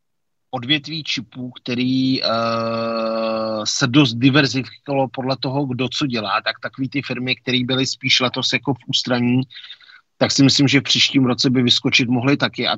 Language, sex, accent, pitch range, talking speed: Czech, male, native, 115-130 Hz, 160 wpm